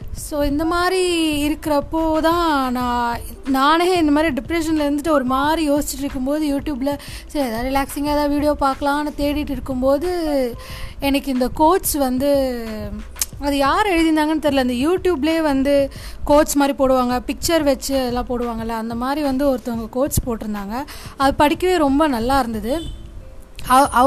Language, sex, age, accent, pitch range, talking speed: Tamil, female, 20-39, native, 260-310 Hz, 130 wpm